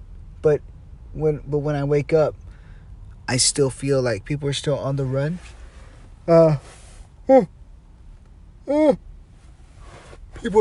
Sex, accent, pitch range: male, American, 85-140 Hz